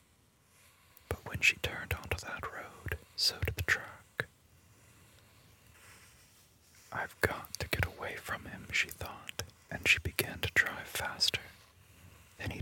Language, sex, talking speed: English, male, 125 wpm